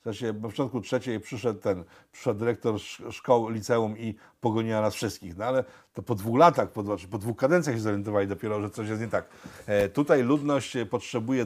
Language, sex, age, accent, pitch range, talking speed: Polish, male, 50-69, native, 110-145 Hz, 190 wpm